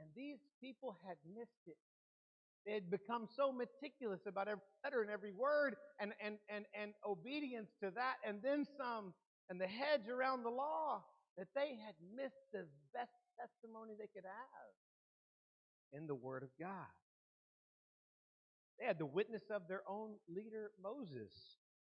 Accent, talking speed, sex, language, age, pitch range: American, 155 wpm, male, English, 50-69, 195-250 Hz